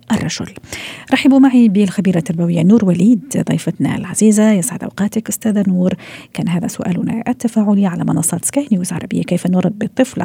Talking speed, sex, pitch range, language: 140 wpm, female, 180-220 Hz, Arabic